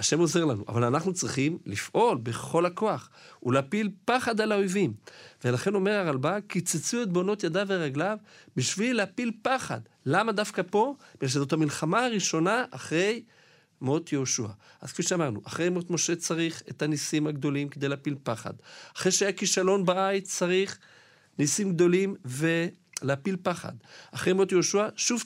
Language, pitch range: Hebrew, 120-180 Hz